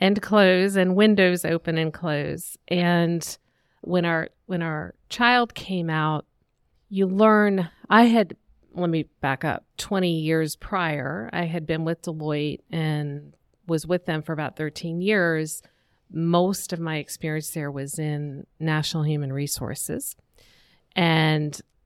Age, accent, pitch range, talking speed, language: 40-59, American, 150-185 Hz, 135 wpm, English